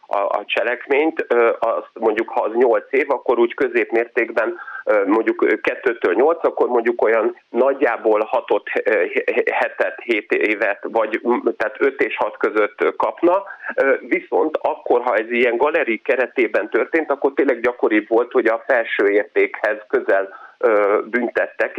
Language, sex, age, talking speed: Hungarian, male, 30-49, 130 wpm